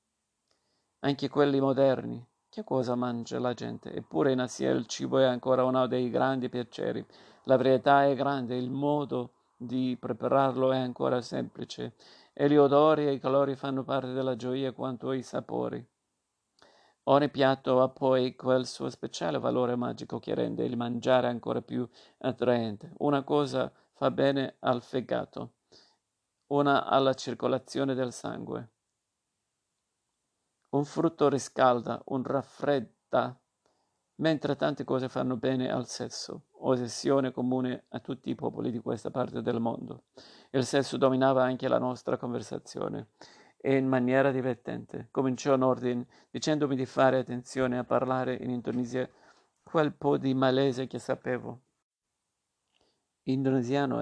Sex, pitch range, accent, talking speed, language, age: male, 125-135 Hz, native, 135 wpm, Italian, 50-69